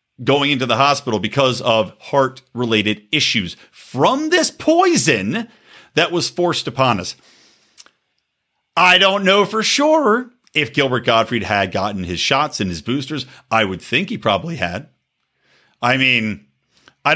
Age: 50-69